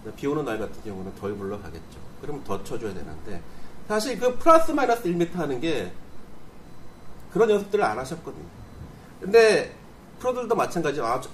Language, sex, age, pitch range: Korean, male, 40-59, 150-235 Hz